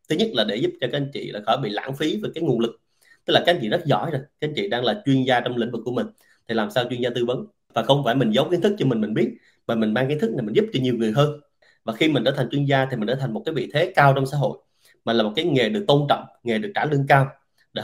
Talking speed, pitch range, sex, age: 340 wpm, 115-135 Hz, male, 20-39